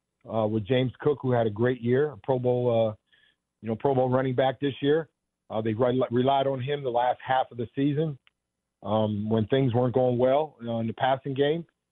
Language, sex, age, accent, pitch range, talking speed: English, male, 40-59, American, 115-140 Hz, 225 wpm